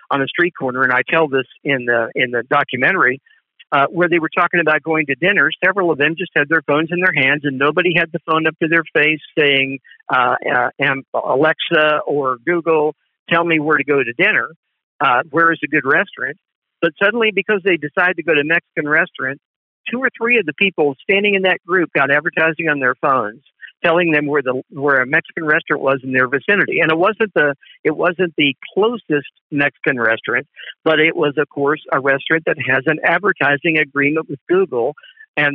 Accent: American